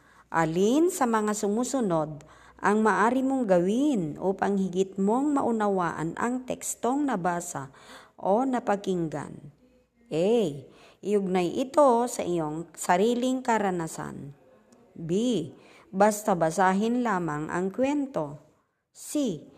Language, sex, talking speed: Filipino, male, 95 wpm